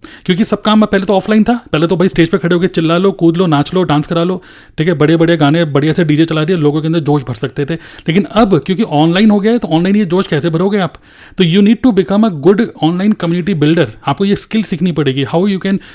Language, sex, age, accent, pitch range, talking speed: Hindi, male, 30-49, native, 150-190 Hz, 270 wpm